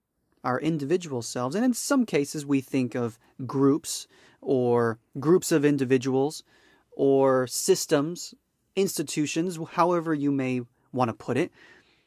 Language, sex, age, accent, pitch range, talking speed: English, male, 30-49, American, 130-160 Hz, 125 wpm